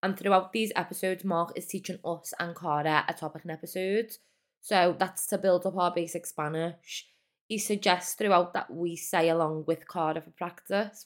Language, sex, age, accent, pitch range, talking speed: English, female, 20-39, British, 150-175 Hz, 180 wpm